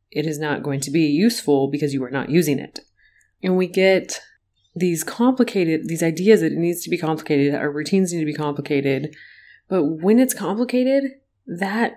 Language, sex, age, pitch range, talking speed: English, female, 30-49, 145-185 Hz, 190 wpm